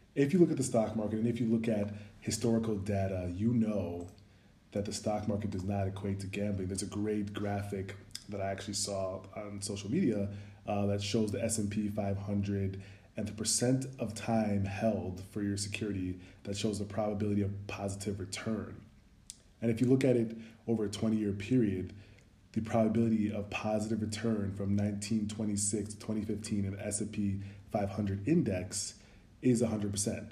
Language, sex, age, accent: English, male, 20-39, American